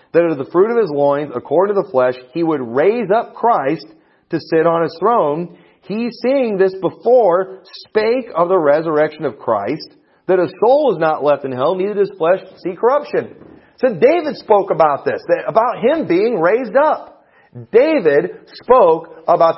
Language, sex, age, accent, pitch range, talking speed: English, male, 40-59, American, 155-225 Hz, 180 wpm